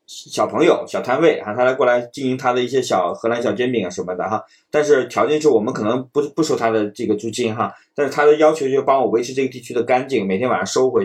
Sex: male